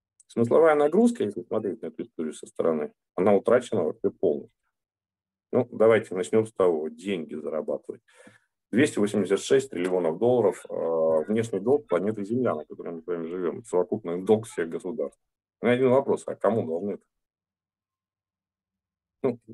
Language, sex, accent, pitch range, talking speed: Russian, male, native, 90-130 Hz, 130 wpm